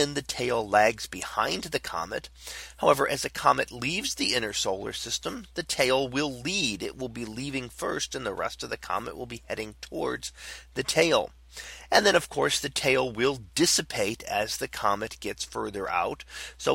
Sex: male